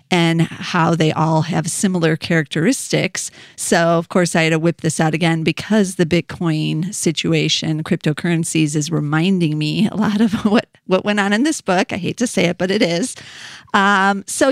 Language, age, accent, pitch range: English, 40-59, American, 155-190 Hz